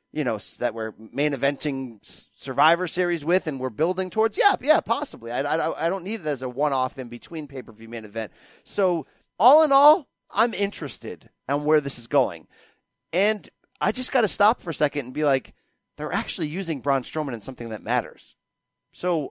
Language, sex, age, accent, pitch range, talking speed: English, male, 30-49, American, 140-195 Hz, 195 wpm